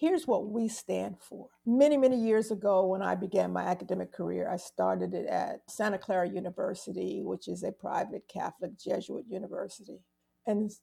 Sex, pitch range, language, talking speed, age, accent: female, 190-255 Hz, English, 165 wpm, 50-69, American